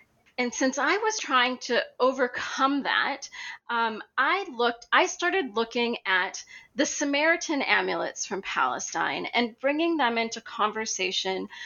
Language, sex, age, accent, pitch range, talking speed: English, female, 30-49, American, 210-285 Hz, 130 wpm